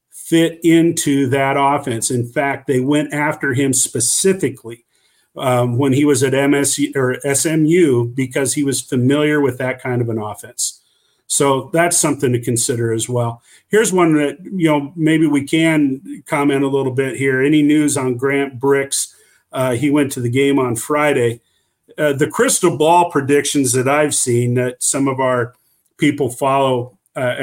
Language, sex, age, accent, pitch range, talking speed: English, male, 50-69, American, 130-150 Hz, 170 wpm